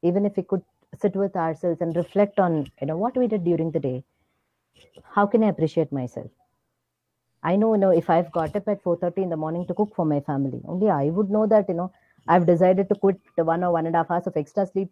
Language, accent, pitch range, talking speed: English, Indian, 165-225 Hz, 260 wpm